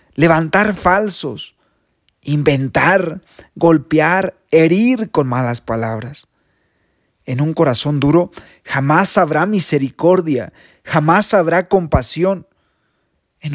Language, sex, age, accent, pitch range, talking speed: Spanish, male, 40-59, Mexican, 130-170 Hz, 85 wpm